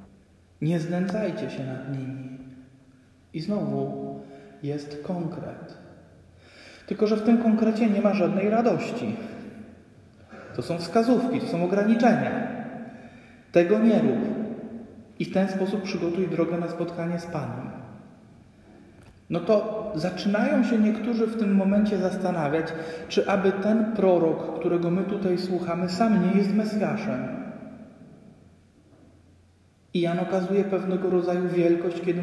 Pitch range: 160-205 Hz